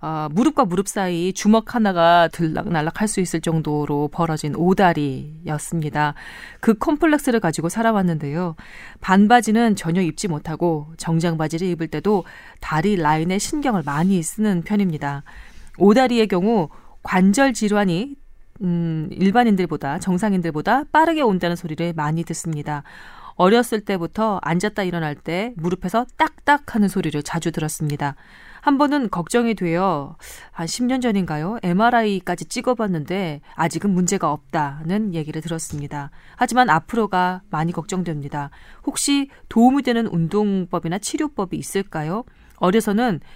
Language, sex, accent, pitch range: Korean, female, native, 160-225 Hz